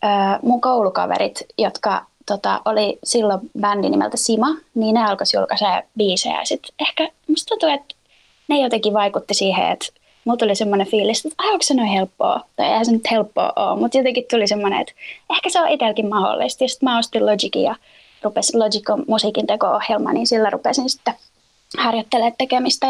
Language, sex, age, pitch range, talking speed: Finnish, female, 20-39, 215-260 Hz, 160 wpm